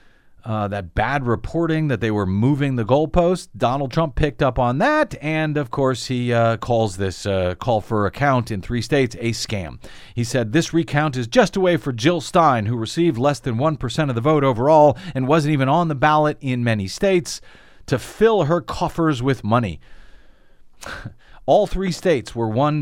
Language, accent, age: English, American, 40-59